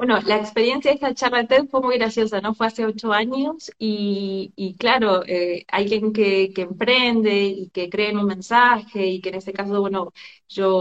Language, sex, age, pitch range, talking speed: Spanish, female, 30-49, 185-220 Hz, 200 wpm